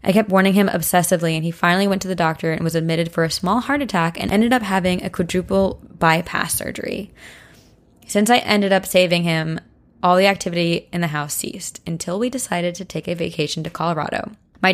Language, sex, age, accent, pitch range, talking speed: English, female, 20-39, American, 165-195 Hz, 210 wpm